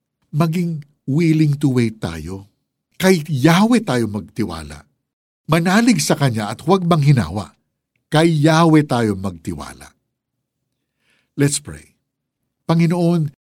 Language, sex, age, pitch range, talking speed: Filipino, male, 60-79, 105-165 Hz, 105 wpm